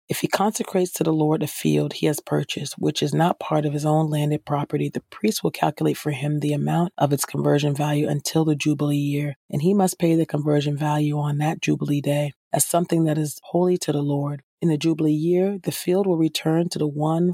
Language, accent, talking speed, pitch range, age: English, American, 230 wpm, 145-170 Hz, 40-59